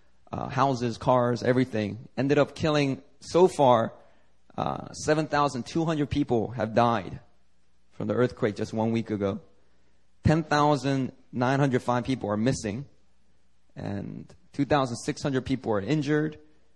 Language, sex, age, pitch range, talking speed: English, male, 20-39, 105-135 Hz, 105 wpm